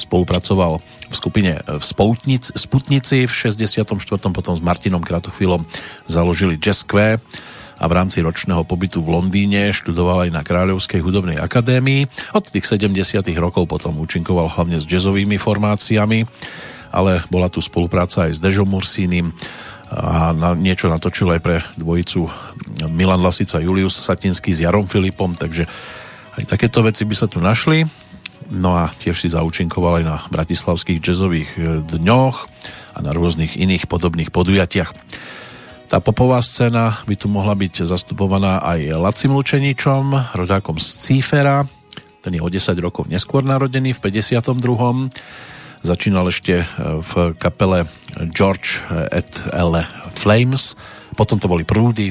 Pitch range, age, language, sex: 85-110 Hz, 40-59, Slovak, male